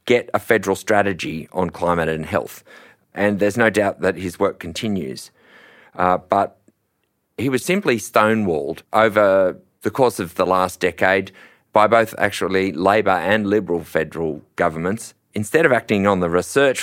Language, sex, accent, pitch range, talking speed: English, male, Australian, 90-110 Hz, 155 wpm